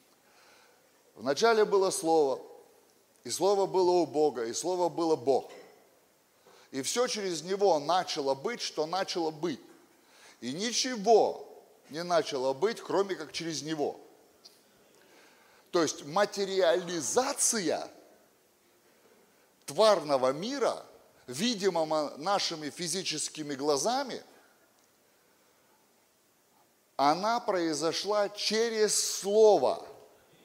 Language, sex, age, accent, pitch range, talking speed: Russian, male, 30-49, native, 155-230 Hz, 85 wpm